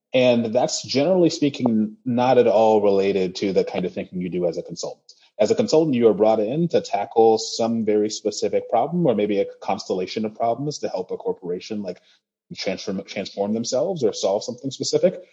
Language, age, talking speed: English, 30-49, 190 wpm